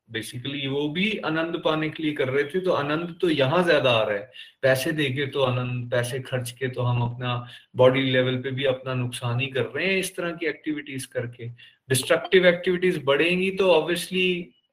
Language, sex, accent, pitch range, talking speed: Hindi, male, native, 130-175 Hz, 195 wpm